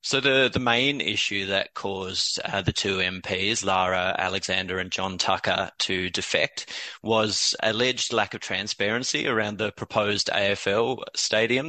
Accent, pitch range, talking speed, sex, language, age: Australian, 95-110 Hz, 145 wpm, male, English, 20-39